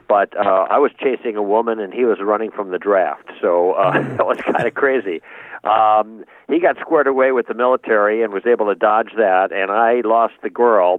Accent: American